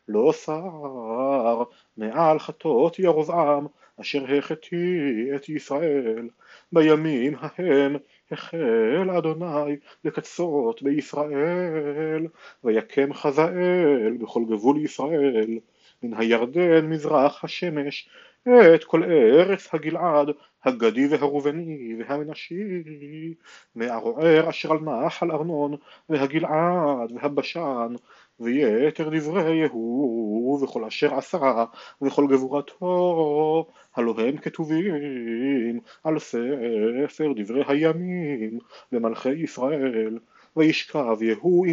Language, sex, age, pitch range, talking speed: Hebrew, male, 40-59, 125-160 Hz, 85 wpm